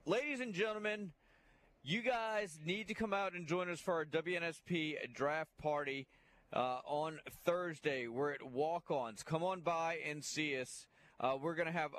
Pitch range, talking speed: 140-175 Hz, 170 wpm